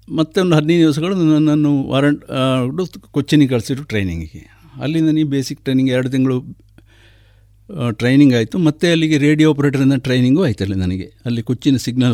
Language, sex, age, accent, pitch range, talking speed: Kannada, male, 60-79, native, 105-160 Hz, 135 wpm